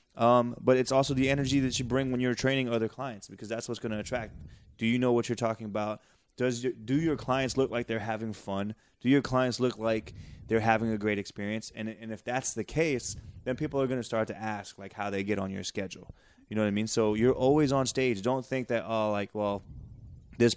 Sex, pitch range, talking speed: male, 105-125 Hz, 250 wpm